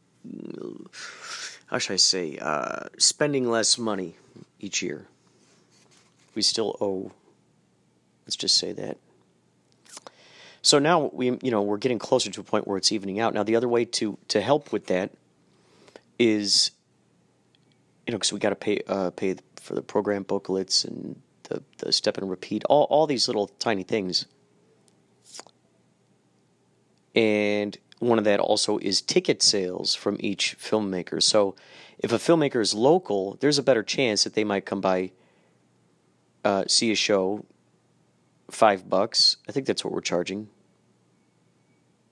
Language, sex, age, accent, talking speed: English, male, 30-49, American, 150 wpm